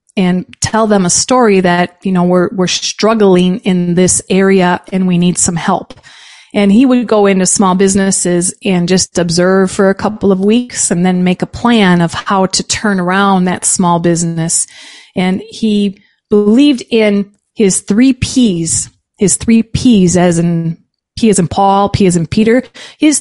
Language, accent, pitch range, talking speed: English, American, 180-230 Hz, 175 wpm